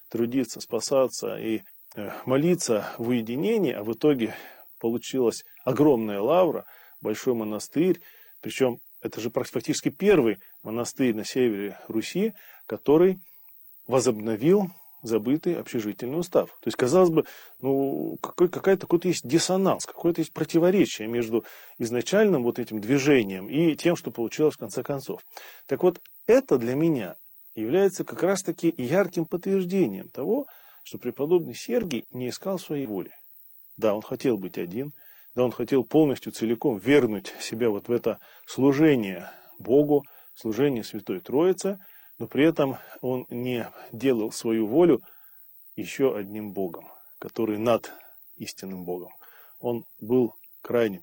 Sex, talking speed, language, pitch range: male, 125 wpm, Russian, 115-165 Hz